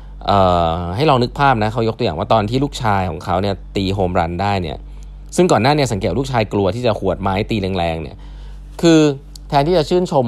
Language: Thai